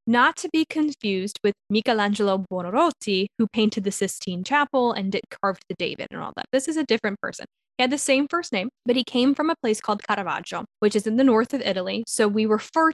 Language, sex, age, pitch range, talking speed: English, female, 10-29, 195-240 Hz, 225 wpm